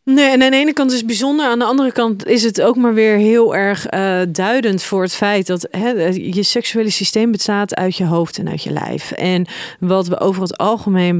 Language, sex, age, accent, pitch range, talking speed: Dutch, female, 30-49, Dutch, 170-205 Hz, 235 wpm